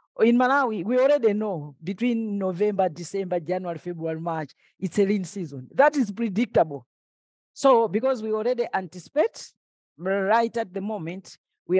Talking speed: 140 wpm